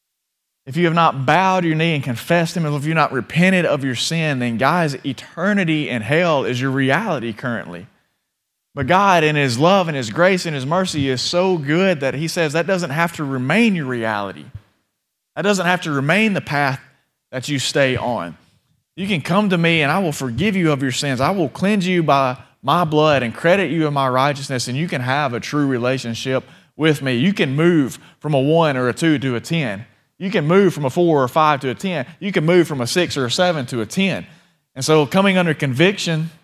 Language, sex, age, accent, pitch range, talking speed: English, male, 30-49, American, 135-175 Hz, 225 wpm